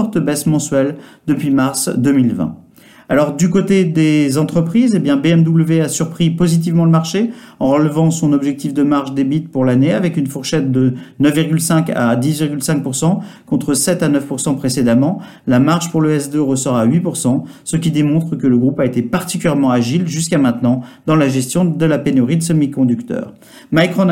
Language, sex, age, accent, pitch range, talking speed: French, male, 50-69, French, 135-170 Hz, 170 wpm